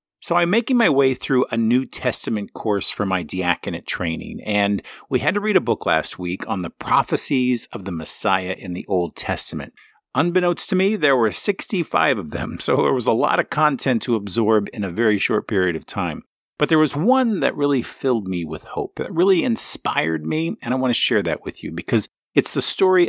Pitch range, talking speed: 100-155 Hz, 215 wpm